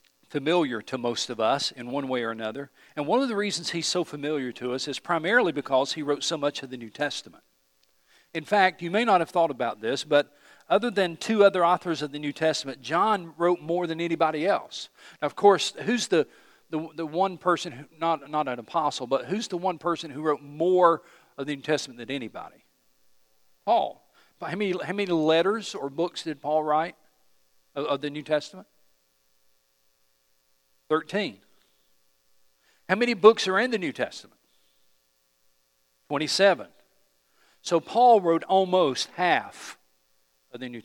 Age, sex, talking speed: 50-69, male, 175 wpm